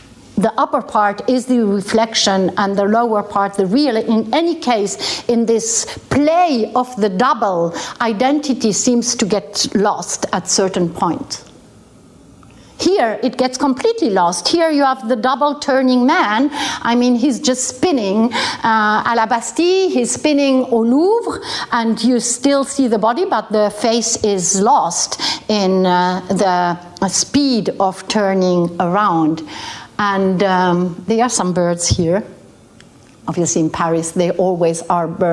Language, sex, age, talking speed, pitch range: English, female, 60-79, 145 wpm, 195-260 Hz